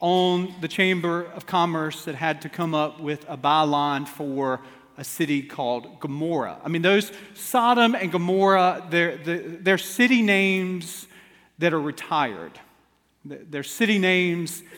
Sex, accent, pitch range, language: male, American, 155-195 Hz, English